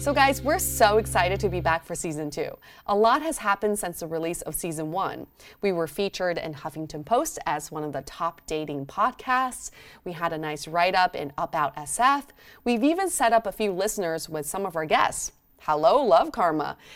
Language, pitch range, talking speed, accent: English, 160-220 Hz, 205 wpm, American